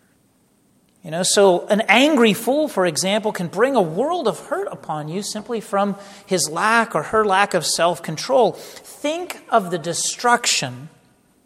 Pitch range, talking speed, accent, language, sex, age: 175-235 Hz, 150 wpm, American, English, male, 40-59